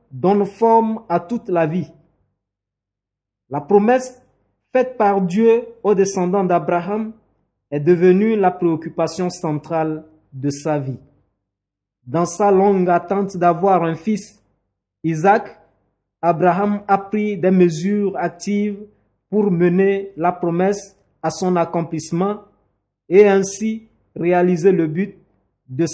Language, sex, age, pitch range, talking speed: French, male, 50-69, 155-195 Hz, 115 wpm